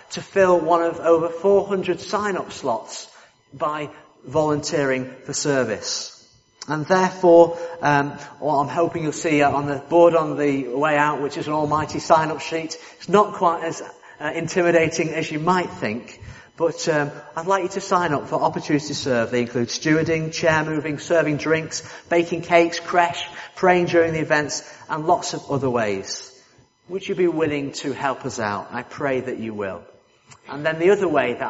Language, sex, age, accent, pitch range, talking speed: English, male, 40-59, British, 140-170 Hz, 180 wpm